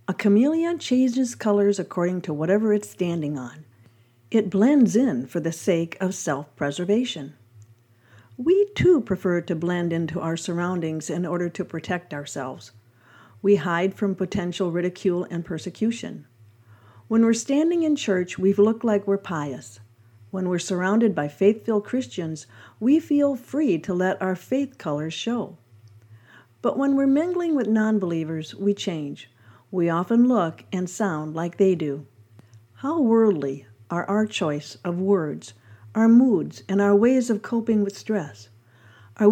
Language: English